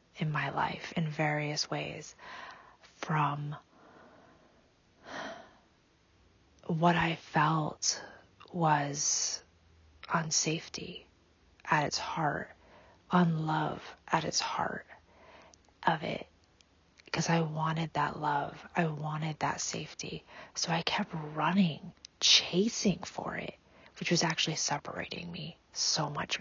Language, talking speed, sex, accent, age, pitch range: English, 105 wpm, female, American, 30-49, 130-175 Hz